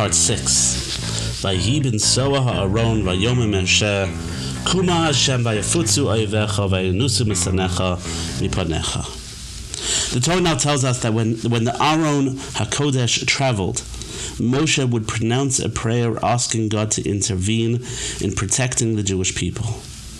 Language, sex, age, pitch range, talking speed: English, male, 50-69, 105-130 Hz, 85 wpm